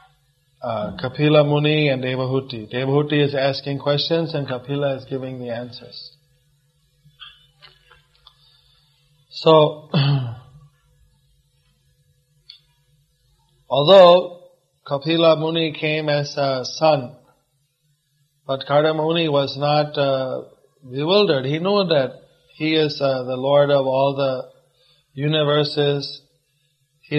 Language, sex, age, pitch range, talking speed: English, male, 30-49, 140-150 Hz, 95 wpm